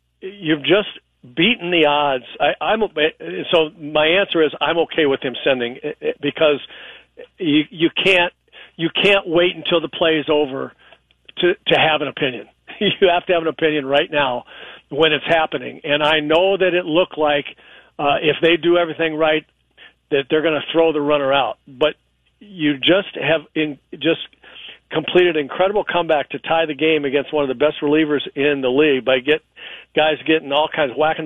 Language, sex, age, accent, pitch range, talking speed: English, male, 50-69, American, 145-170 Hz, 185 wpm